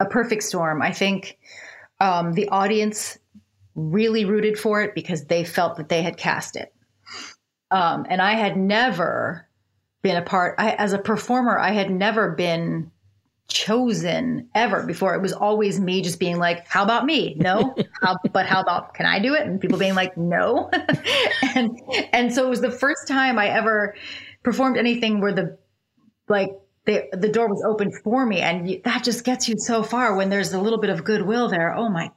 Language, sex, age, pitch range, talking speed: English, female, 30-49, 180-220 Hz, 185 wpm